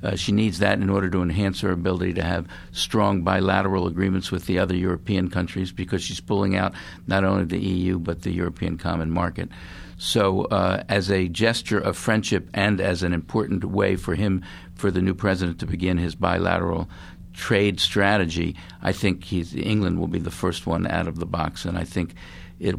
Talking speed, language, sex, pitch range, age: 190 wpm, English, male, 90-100 Hz, 50-69